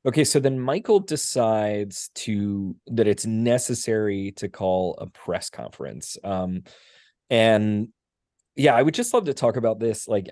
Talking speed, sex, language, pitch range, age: 150 wpm, male, English, 100-120 Hz, 20-39